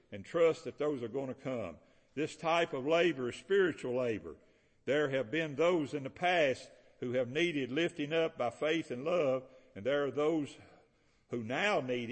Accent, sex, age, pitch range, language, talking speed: American, male, 60-79, 130-165 Hz, English, 190 wpm